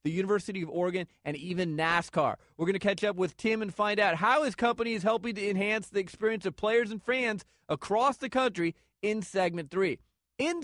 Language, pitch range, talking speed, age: English, 180-235 Hz, 210 wpm, 30-49